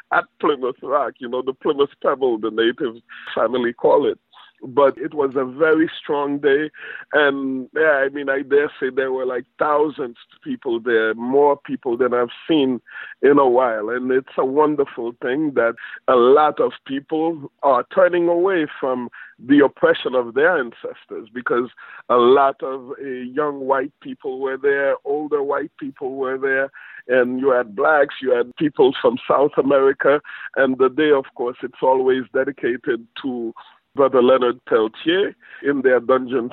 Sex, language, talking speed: male, English, 165 wpm